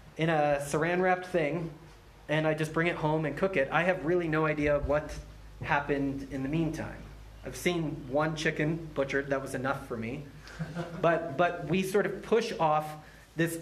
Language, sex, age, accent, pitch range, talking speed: English, male, 30-49, American, 130-175 Hz, 190 wpm